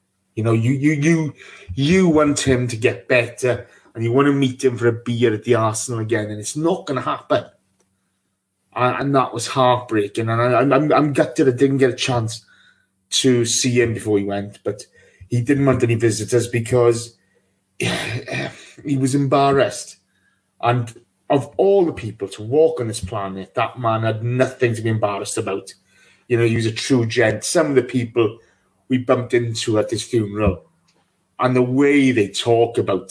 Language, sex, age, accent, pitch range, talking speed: English, male, 30-49, British, 115-145 Hz, 185 wpm